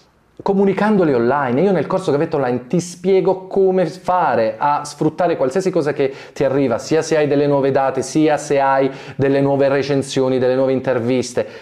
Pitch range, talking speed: 135-175 Hz, 175 wpm